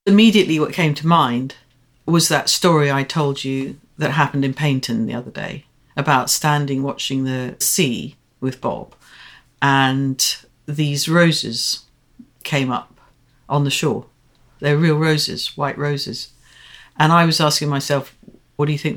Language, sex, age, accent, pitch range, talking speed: English, female, 50-69, British, 130-155 Hz, 150 wpm